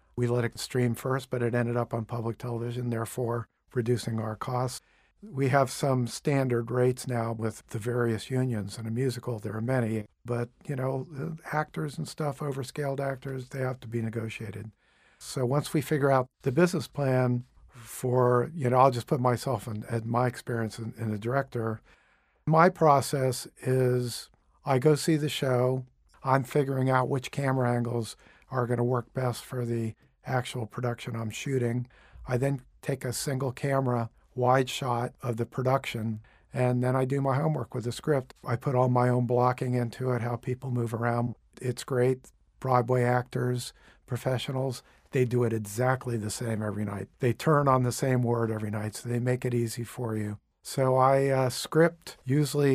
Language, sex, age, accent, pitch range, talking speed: English, male, 50-69, American, 120-135 Hz, 180 wpm